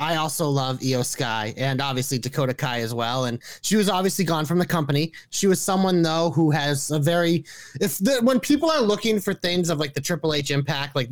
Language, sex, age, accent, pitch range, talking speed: English, male, 30-49, American, 145-195 Hz, 220 wpm